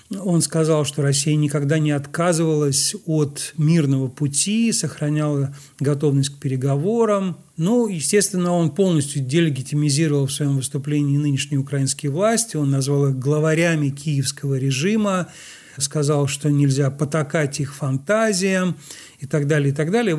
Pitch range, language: 140-165 Hz, Russian